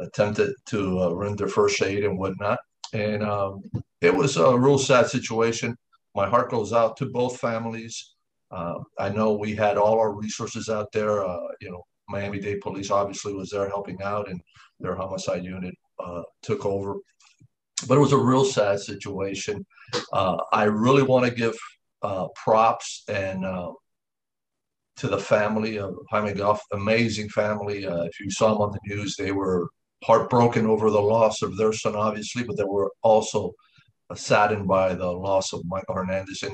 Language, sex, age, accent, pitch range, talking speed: English, male, 50-69, American, 95-110 Hz, 170 wpm